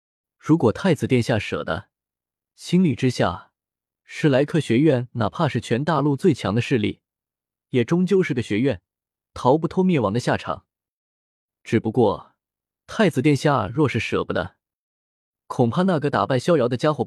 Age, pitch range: 20-39, 110-160 Hz